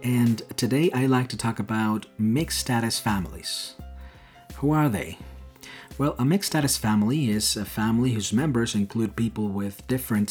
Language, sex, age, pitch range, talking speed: English, male, 40-59, 100-125 Hz, 145 wpm